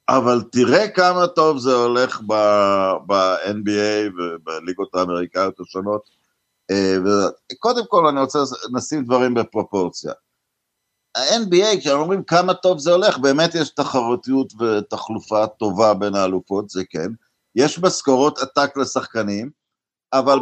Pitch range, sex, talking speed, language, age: 125-180 Hz, male, 110 wpm, Hebrew, 50-69